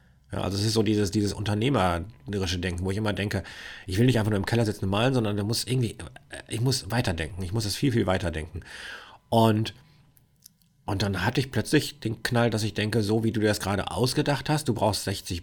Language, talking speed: German, 220 wpm